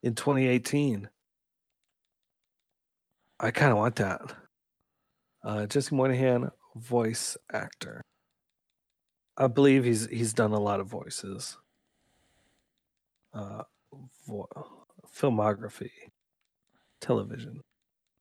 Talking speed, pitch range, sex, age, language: 80 wpm, 110-140 Hz, male, 30-49, English